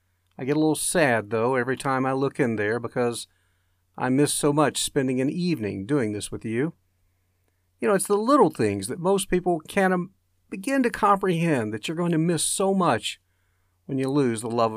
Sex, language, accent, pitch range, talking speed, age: male, English, American, 95-150 Hz, 200 wpm, 50-69